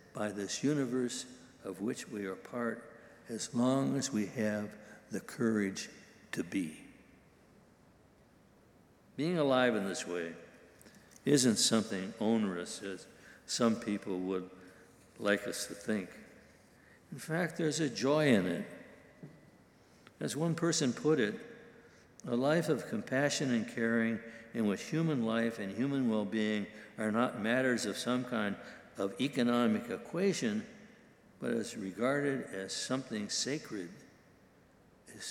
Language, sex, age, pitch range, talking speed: English, male, 60-79, 105-140 Hz, 125 wpm